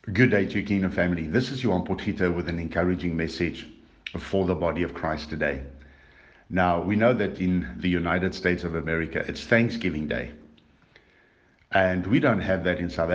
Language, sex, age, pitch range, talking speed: English, male, 60-79, 80-95 Hz, 185 wpm